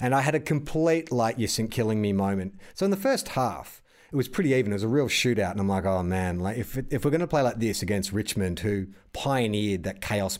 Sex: male